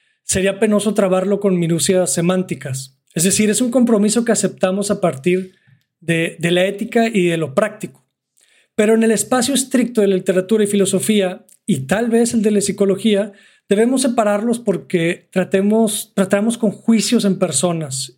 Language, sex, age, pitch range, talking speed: Spanish, male, 40-59, 180-215 Hz, 160 wpm